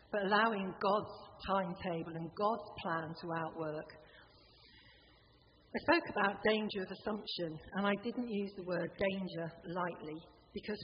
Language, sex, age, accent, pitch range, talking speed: English, female, 50-69, British, 170-210 Hz, 135 wpm